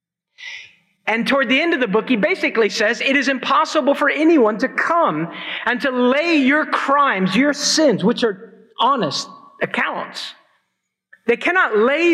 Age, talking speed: 50-69, 155 wpm